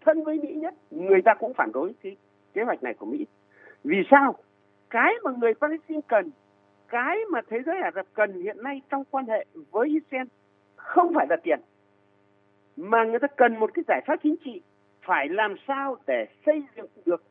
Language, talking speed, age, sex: Vietnamese, 195 wpm, 60-79, male